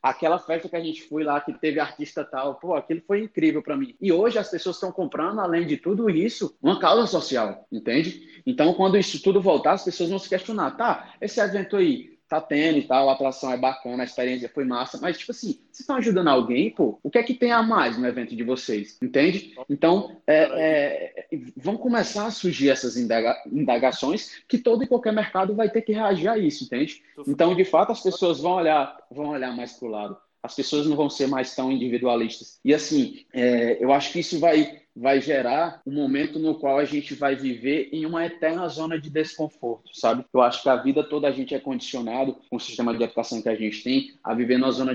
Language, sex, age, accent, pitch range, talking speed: Portuguese, male, 20-39, Brazilian, 125-185 Hz, 225 wpm